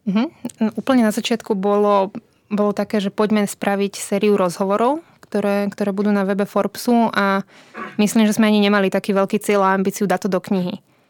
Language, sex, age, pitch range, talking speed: Slovak, female, 20-39, 195-215 Hz, 175 wpm